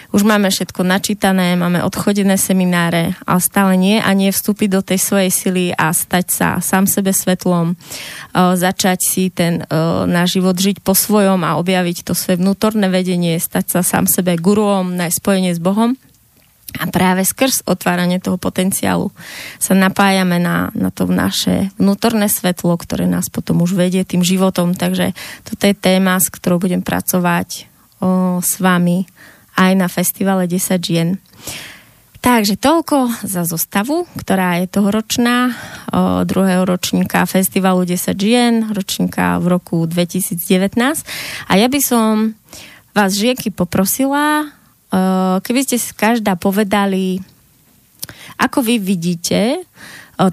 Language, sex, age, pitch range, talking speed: Slovak, female, 20-39, 180-205 Hz, 140 wpm